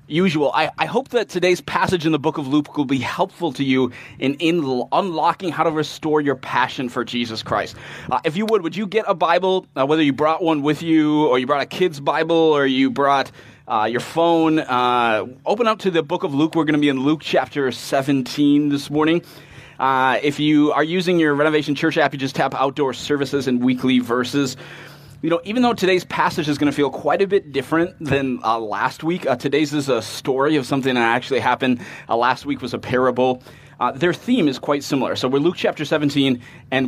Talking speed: 225 wpm